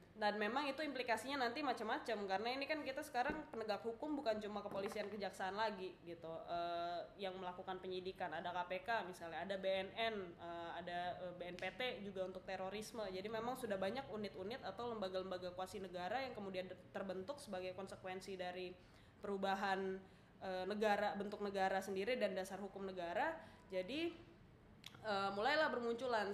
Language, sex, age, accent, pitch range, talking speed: Indonesian, female, 20-39, native, 185-225 Hz, 145 wpm